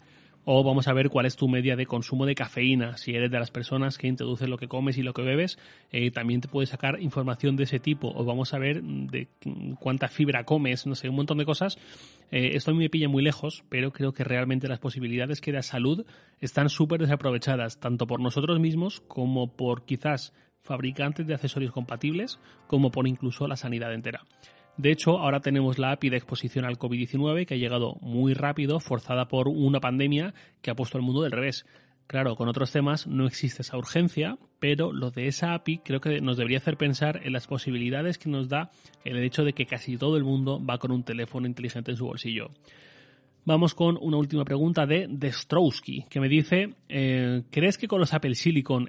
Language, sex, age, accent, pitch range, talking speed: Spanish, male, 30-49, Spanish, 130-155 Hz, 210 wpm